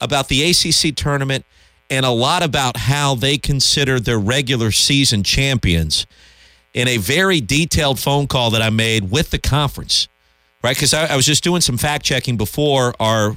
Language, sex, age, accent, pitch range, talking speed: English, male, 40-59, American, 100-135 Hz, 170 wpm